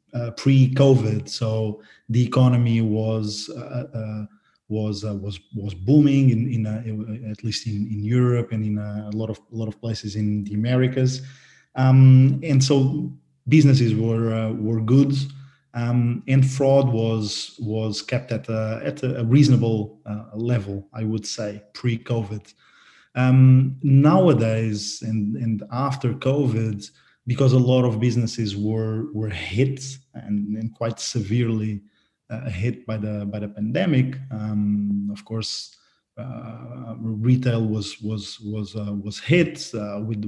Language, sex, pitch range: English, male, 110-130 Hz